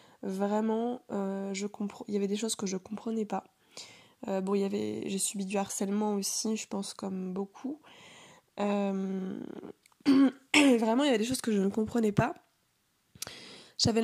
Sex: female